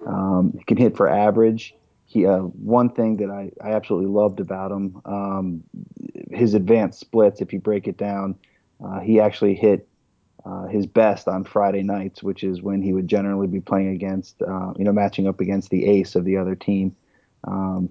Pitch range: 95-105 Hz